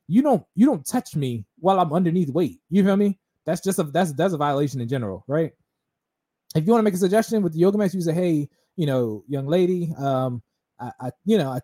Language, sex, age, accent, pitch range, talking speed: English, male, 20-39, American, 145-205 Hz, 240 wpm